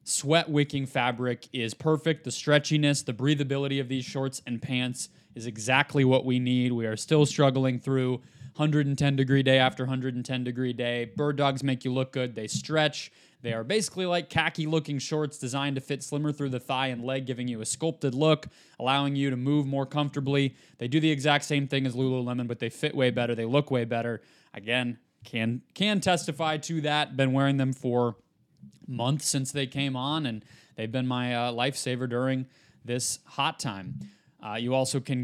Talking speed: 185 wpm